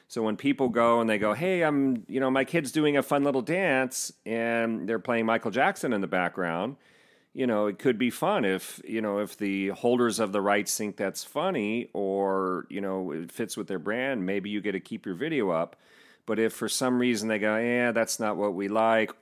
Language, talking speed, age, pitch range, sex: English, 230 wpm, 40-59, 100-115 Hz, male